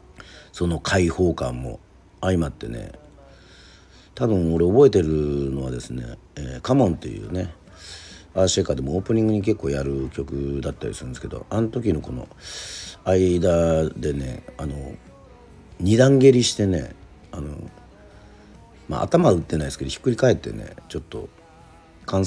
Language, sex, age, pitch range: Japanese, male, 50-69, 80-110 Hz